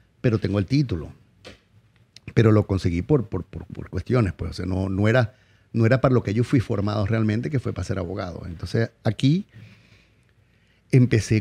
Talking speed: 185 wpm